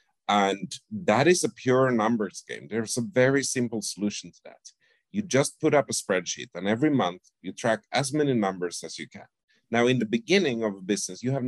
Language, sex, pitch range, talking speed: English, male, 100-135 Hz, 210 wpm